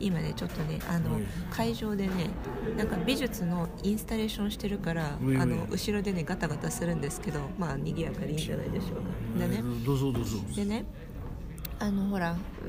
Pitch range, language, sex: 175-205 Hz, Japanese, female